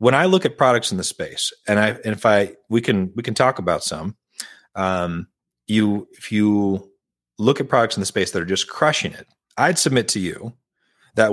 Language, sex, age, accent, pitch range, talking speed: English, male, 40-59, American, 100-135 Hz, 210 wpm